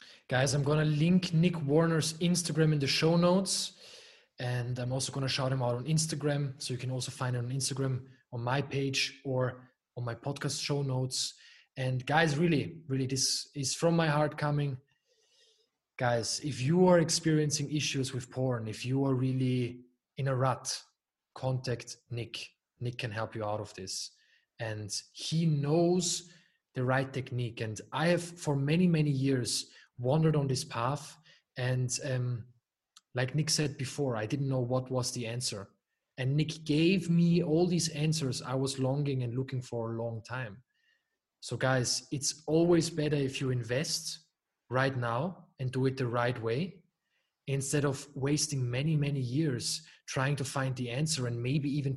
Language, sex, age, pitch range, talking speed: English, male, 20-39, 125-155 Hz, 170 wpm